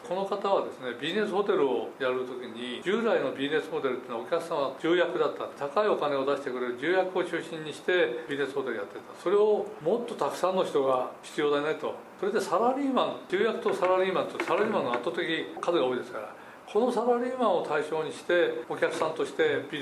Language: Japanese